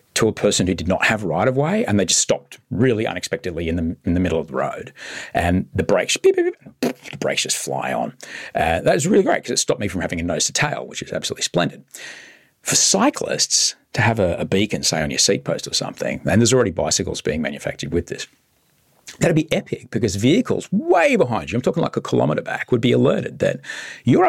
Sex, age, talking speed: male, 40-59, 235 wpm